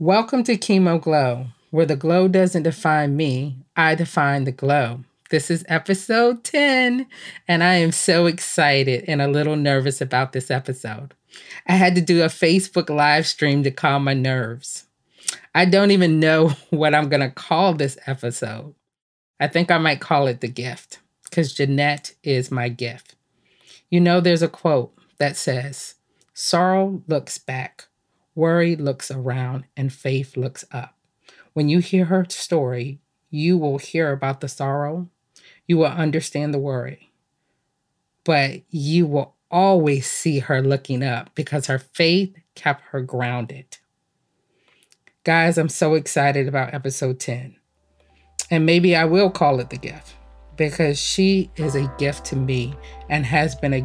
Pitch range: 130-170 Hz